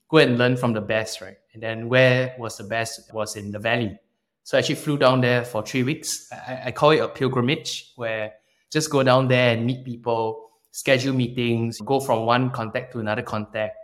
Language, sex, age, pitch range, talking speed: English, male, 20-39, 110-130 Hz, 215 wpm